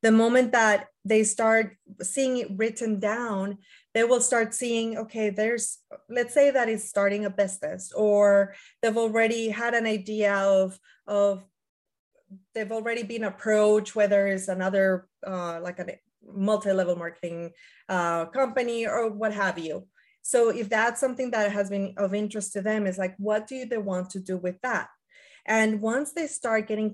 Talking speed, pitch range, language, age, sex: 165 wpm, 195-230 Hz, English, 30-49, female